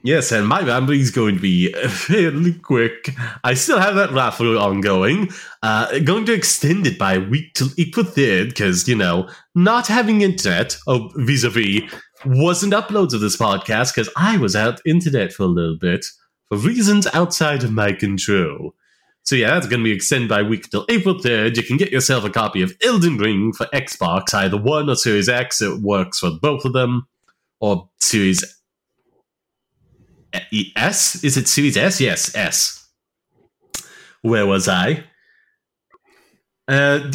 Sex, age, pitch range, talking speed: male, 30-49, 100-150 Hz, 170 wpm